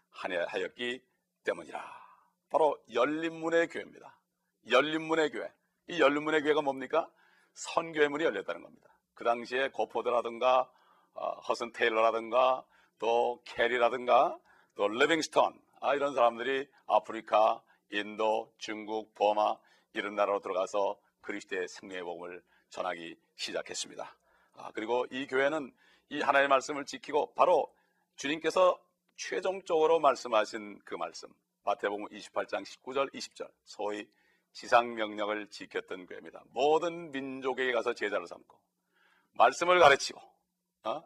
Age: 40-59